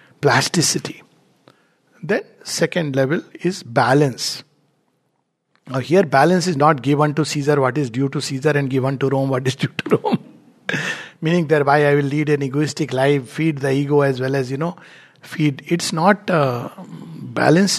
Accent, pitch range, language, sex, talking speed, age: Indian, 140-170 Hz, English, male, 165 wpm, 60-79